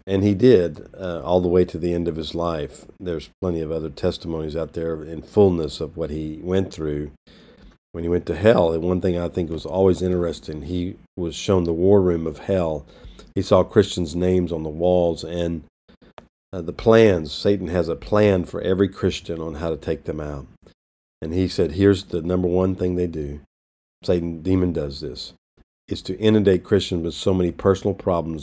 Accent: American